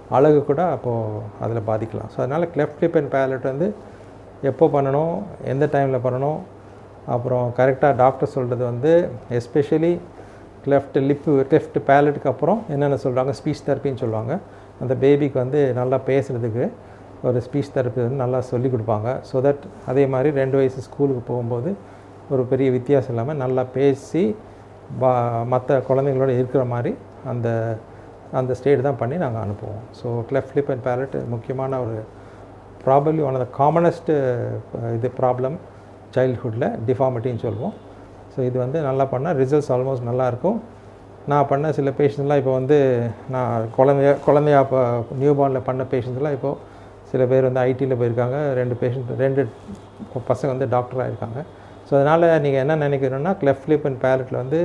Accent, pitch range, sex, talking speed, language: Indian, 120-140 Hz, male, 100 wpm, English